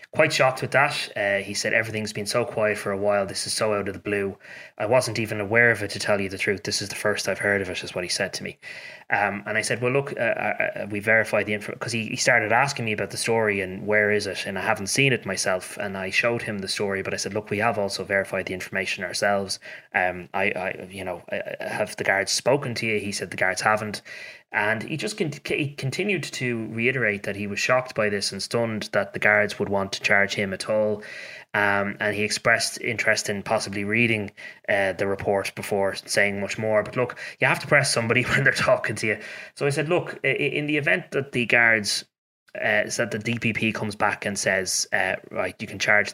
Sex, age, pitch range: male, 20-39, 100-115 Hz